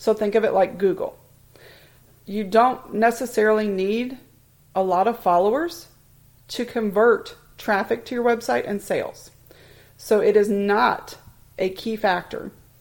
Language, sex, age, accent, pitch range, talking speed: English, female, 40-59, American, 155-225 Hz, 135 wpm